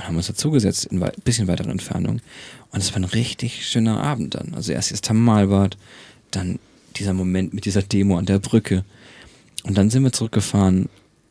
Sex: male